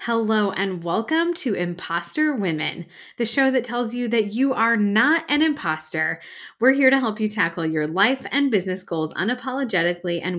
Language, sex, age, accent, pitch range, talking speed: English, female, 20-39, American, 175-225 Hz, 175 wpm